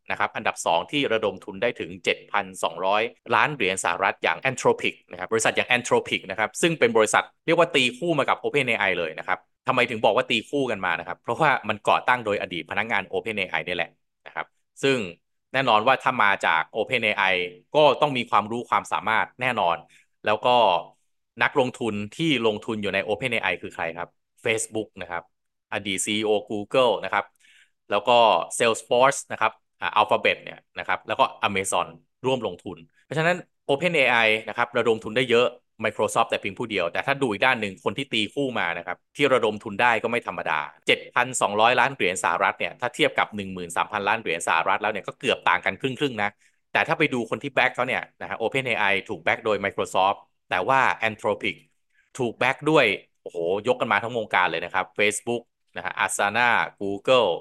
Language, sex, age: Thai, male, 20-39